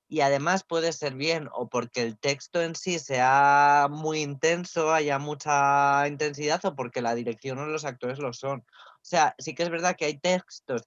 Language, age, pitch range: Spanish, 20-39, 135-160 Hz